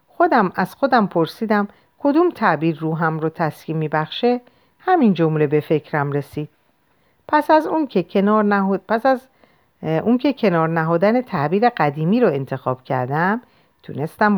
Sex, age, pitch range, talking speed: female, 50-69, 140-215 Hz, 130 wpm